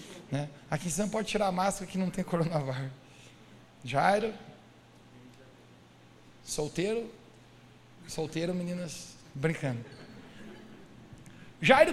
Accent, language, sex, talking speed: Brazilian, Portuguese, male, 90 wpm